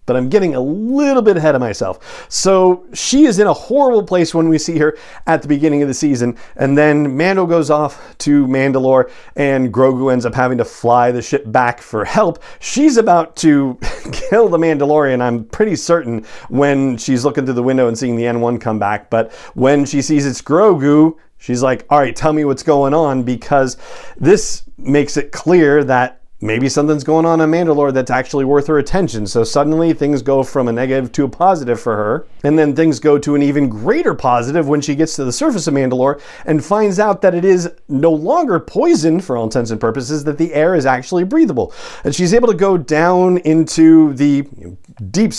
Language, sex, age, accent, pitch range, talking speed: English, male, 40-59, American, 130-165 Hz, 205 wpm